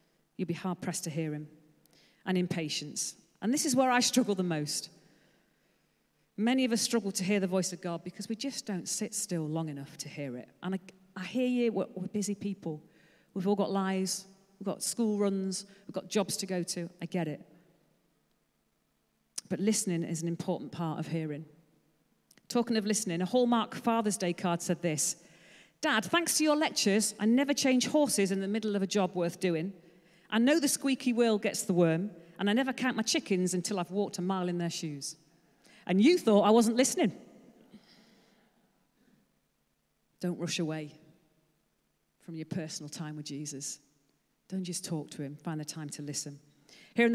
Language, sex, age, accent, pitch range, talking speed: English, female, 40-59, British, 165-215 Hz, 185 wpm